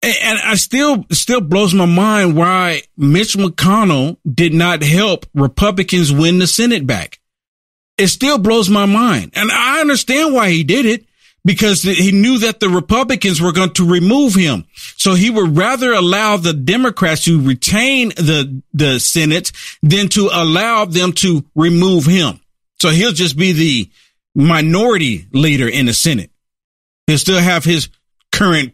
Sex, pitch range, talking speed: male, 125-185 Hz, 155 wpm